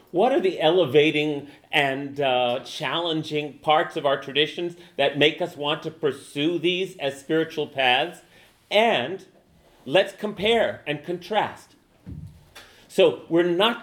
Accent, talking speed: American, 125 wpm